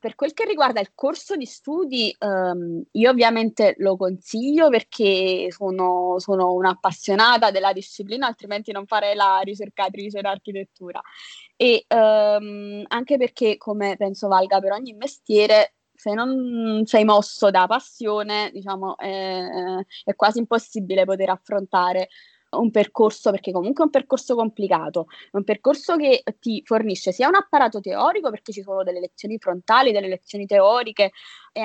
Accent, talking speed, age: native, 140 wpm, 20-39